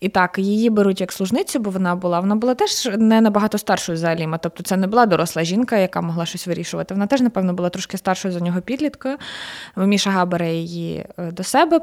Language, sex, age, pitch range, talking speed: Ukrainian, female, 20-39, 180-220 Hz, 210 wpm